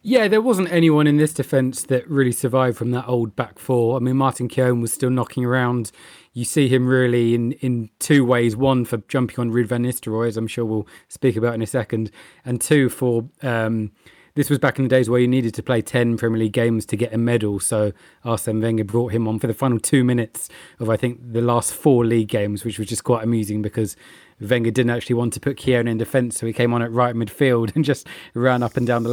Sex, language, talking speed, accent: male, English, 245 wpm, British